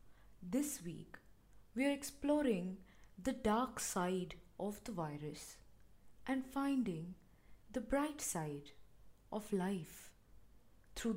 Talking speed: 100 wpm